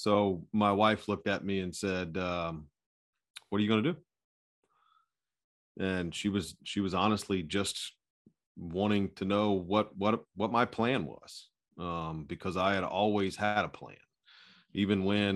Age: 40-59